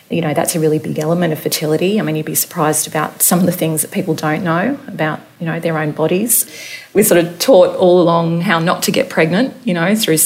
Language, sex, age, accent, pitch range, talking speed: English, female, 30-49, Australian, 155-175 Hz, 250 wpm